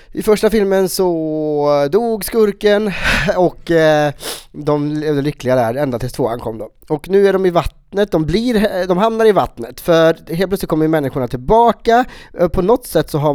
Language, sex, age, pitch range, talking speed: English, male, 30-49, 120-170 Hz, 175 wpm